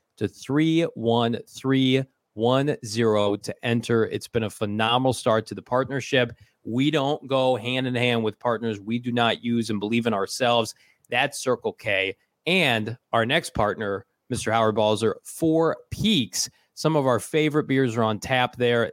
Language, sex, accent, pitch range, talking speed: English, male, American, 115-135 Hz, 155 wpm